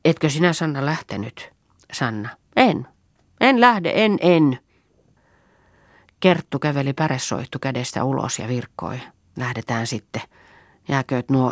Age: 40-59